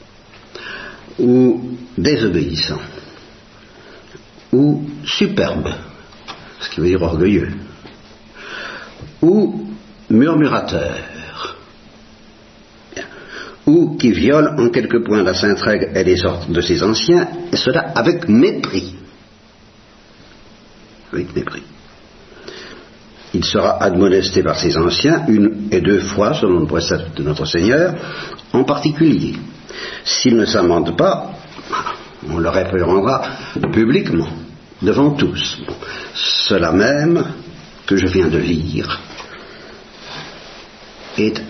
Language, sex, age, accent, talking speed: English, male, 60-79, French, 100 wpm